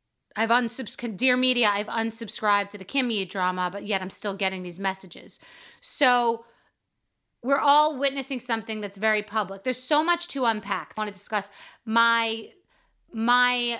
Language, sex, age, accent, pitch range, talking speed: English, female, 30-49, American, 200-255 Hz, 160 wpm